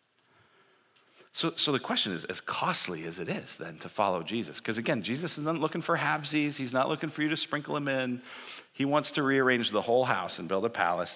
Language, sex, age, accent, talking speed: English, male, 40-59, American, 220 wpm